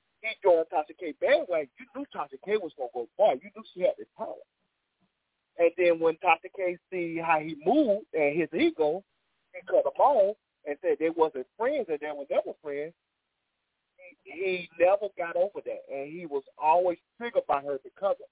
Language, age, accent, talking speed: English, 30-49, American, 200 wpm